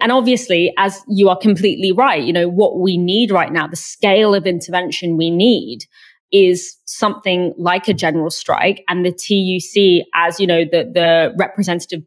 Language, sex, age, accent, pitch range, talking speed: English, female, 20-39, British, 175-230 Hz, 175 wpm